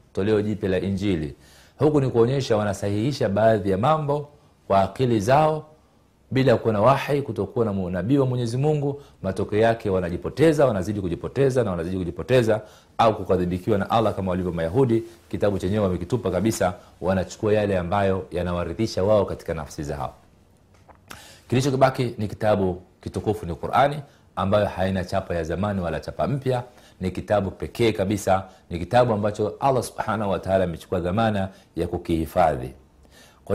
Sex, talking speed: male, 140 wpm